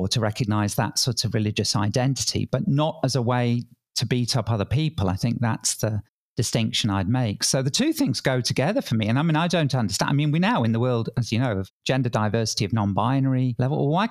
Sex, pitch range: male, 115-135 Hz